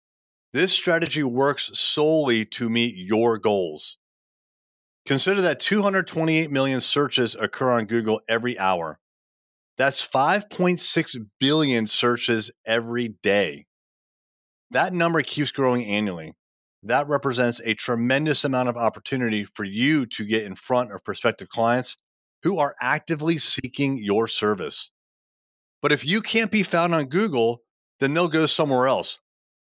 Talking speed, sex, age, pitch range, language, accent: 130 wpm, male, 30-49, 110-150 Hz, English, American